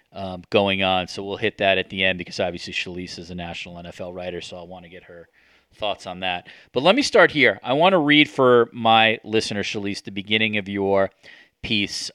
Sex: male